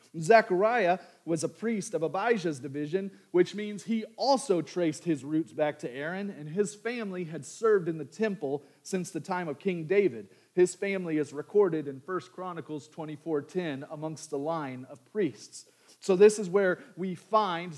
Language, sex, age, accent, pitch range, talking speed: English, male, 40-59, American, 160-215 Hz, 170 wpm